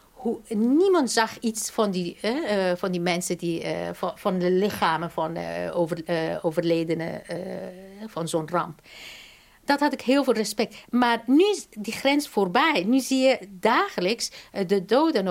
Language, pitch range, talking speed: Dutch, 190-245 Hz, 175 wpm